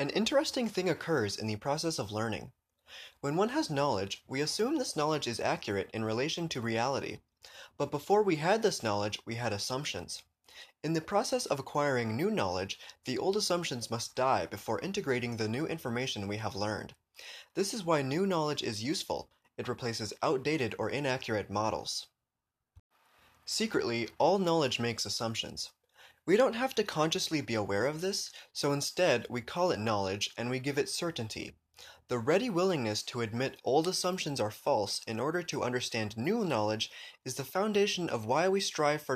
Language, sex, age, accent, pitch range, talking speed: English, male, 20-39, American, 110-170 Hz, 175 wpm